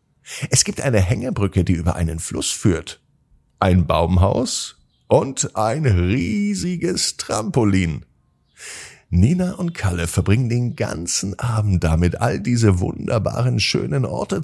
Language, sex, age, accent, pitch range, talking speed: German, male, 50-69, German, 85-130 Hz, 115 wpm